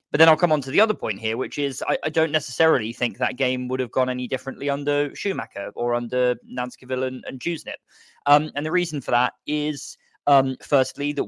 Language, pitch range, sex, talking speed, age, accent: English, 120-135 Hz, male, 225 wpm, 20-39, British